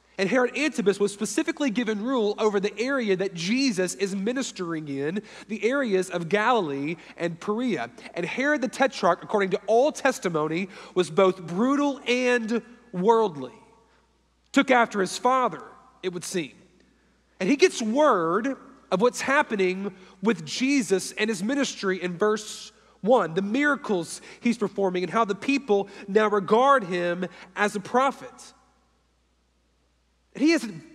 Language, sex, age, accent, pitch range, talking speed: English, male, 40-59, American, 190-260 Hz, 140 wpm